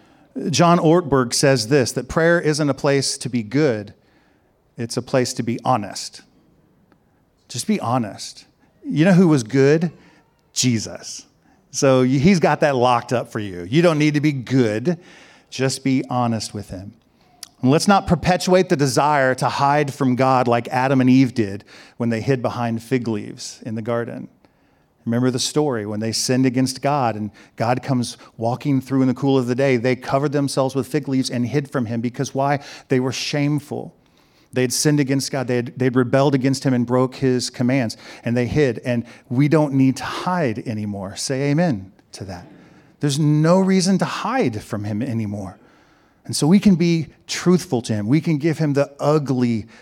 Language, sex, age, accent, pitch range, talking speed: English, male, 40-59, American, 120-150 Hz, 185 wpm